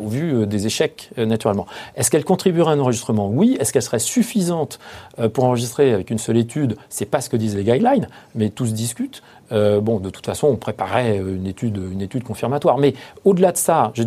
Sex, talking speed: male, 225 wpm